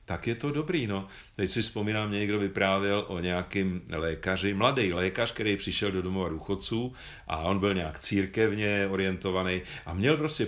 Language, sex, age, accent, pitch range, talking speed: Czech, male, 50-69, native, 95-120 Hz, 165 wpm